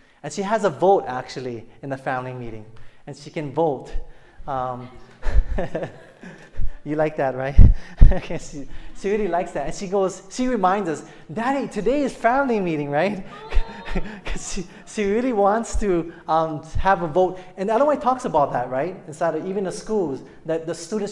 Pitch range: 145-205 Hz